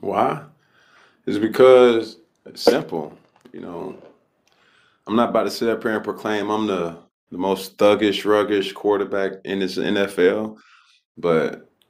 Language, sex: English, male